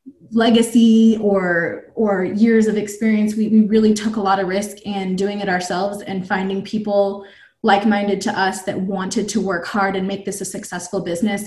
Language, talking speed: English, 185 wpm